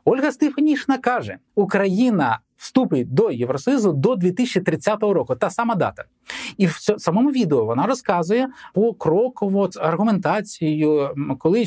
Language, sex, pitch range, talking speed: Ukrainian, male, 155-235 Hz, 130 wpm